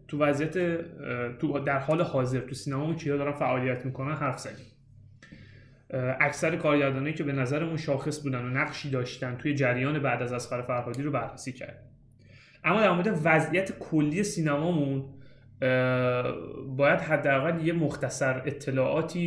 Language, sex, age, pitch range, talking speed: Persian, male, 30-49, 130-165 Hz, 130 wpm